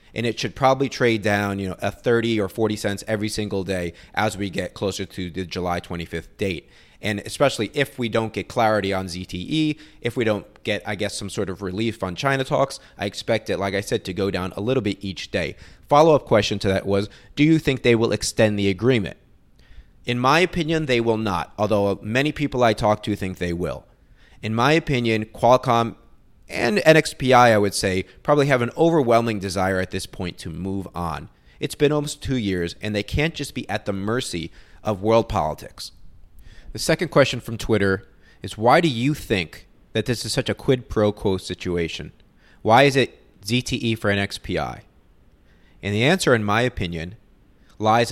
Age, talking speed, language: 30-49, 195 wpm, English